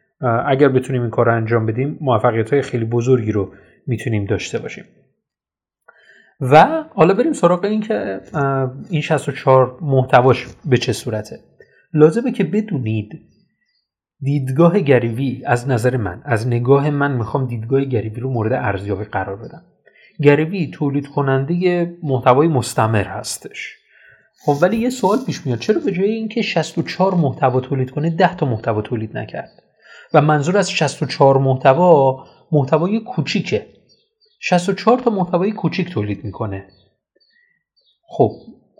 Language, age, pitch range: Persian, 30-49, 125-170 Hz